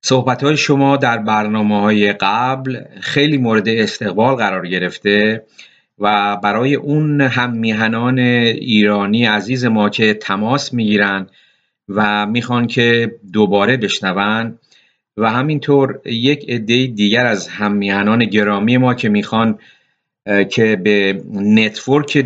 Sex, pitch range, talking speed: male, 105-125 Hz, 110 wpm